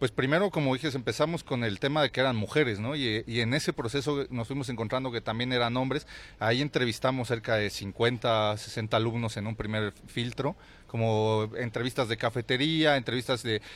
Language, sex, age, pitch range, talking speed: Spanish, male, 40-59, 110-140 Hz, 185 wpm